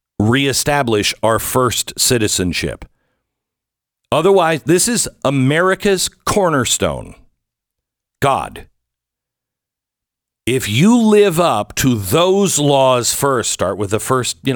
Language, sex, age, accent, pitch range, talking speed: English, male, 60-79, American, 110-160 Hz, 95 wpm